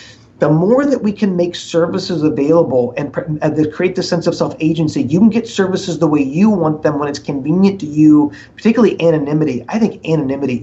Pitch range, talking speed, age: 145-180 Hz, 190 wpm, 30-49